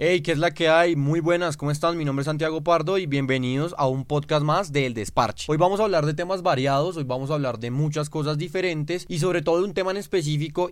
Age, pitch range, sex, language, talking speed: 20-39, 135-165 Hz, male, English, 265 wpm